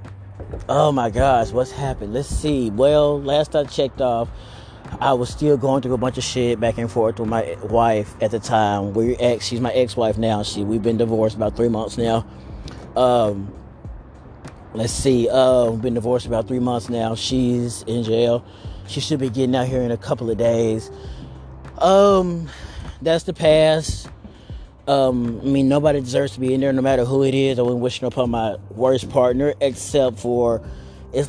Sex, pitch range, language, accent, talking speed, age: male, 110-135 Hz, English, American, 190 wpm, 30-49